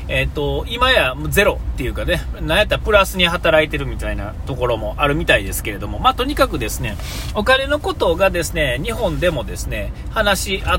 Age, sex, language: 40-59, male, Japanese